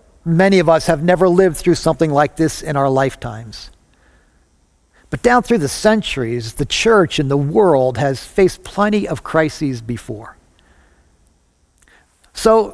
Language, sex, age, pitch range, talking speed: English, male, 50-69, 125-190 Hz, 140 wpm